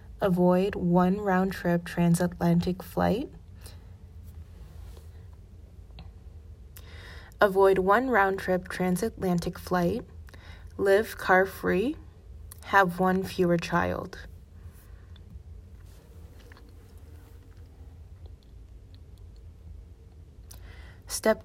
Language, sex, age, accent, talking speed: English, female, 30-49, American, 50 wpm